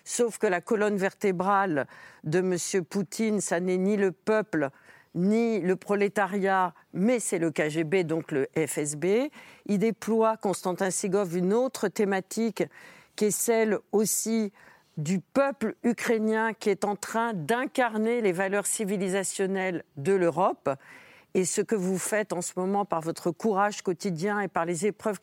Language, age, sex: French, 50-69, female